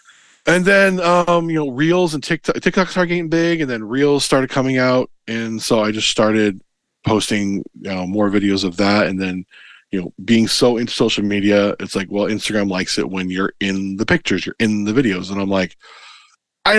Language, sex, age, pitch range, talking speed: English, male, 20-39, 100-140 Hz, 205 wpm